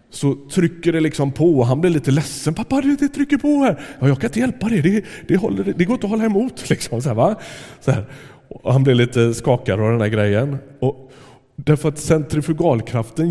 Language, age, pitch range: Swedish, 30-49, 115-150 Hz